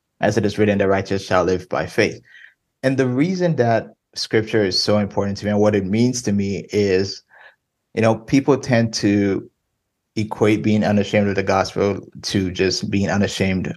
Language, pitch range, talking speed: English, 100-115 Hz, 185 wpm